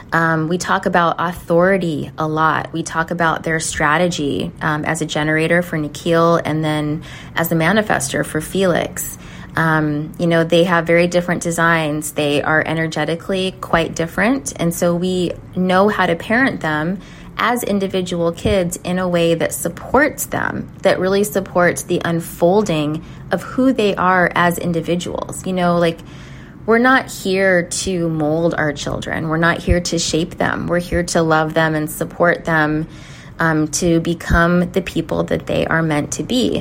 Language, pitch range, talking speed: English, 155-175 Hz, 165 wpm